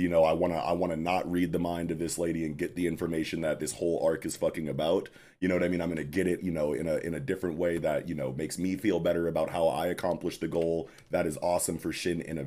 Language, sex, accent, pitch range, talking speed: English, male, American, 80-95 Hz, 310 wpm